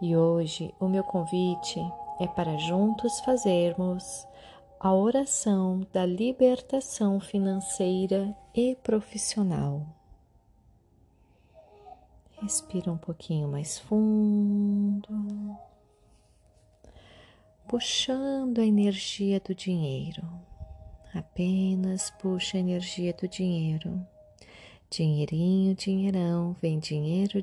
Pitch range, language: 150-205 Hz, Portuguese